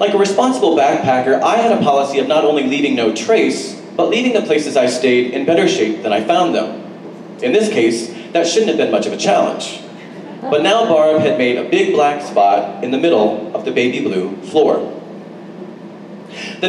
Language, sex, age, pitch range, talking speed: English, male, 30-49, 130-205 Hz, 200 wpm